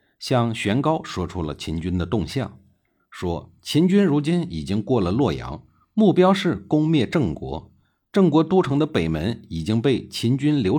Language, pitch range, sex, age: Chinese, 90-145 Hz, male, 50-69